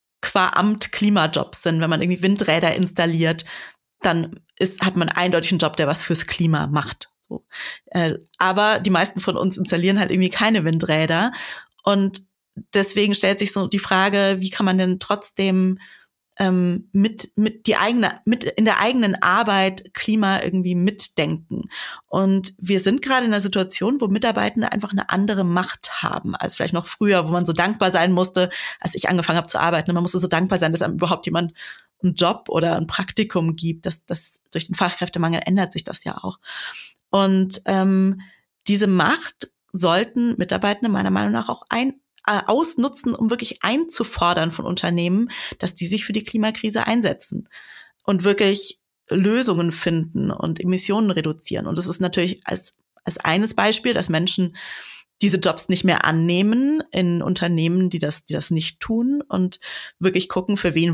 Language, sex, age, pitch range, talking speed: German, female, 30-49, 175-205 Hz, 170 wpm